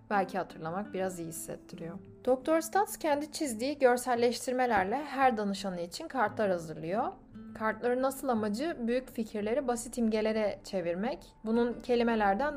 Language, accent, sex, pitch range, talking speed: Turkish, native, female, 190-250 Hz, 120 wpm